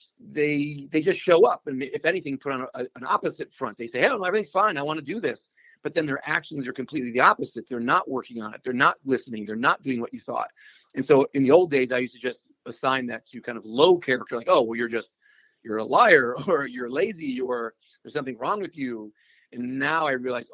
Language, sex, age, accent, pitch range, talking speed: English, male, 40-59, American, 125-160 Hz, 240 wpm